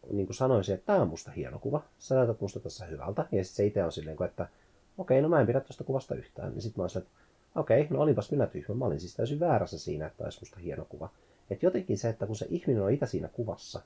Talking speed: 265 wpm